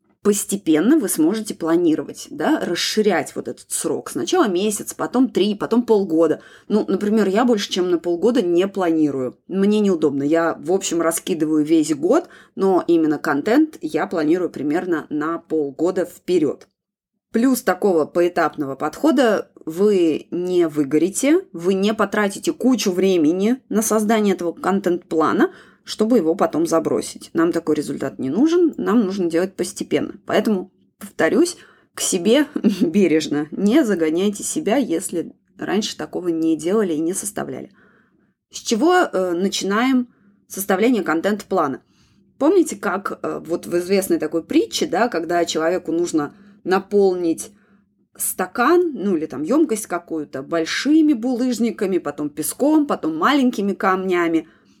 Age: 20-39